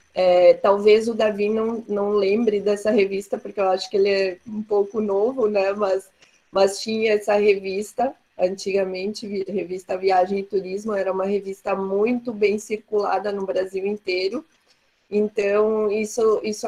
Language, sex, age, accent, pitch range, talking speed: Portuguese, female, 20-39, Brazilian, 190-215 Hz, 150 wpm